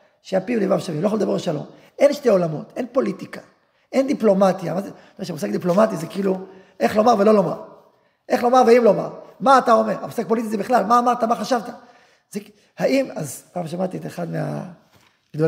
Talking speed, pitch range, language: 190 wpm, 200-265 Hz, Hebrew